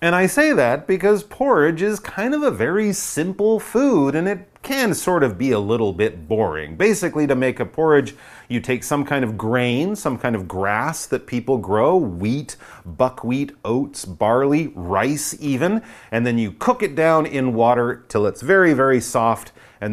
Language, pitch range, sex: Chinese, 95-155 Hz, male